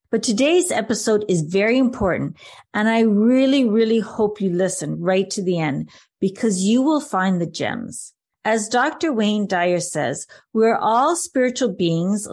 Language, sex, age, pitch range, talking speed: English, female, 40-59, 180-235 Hz, 155 wpm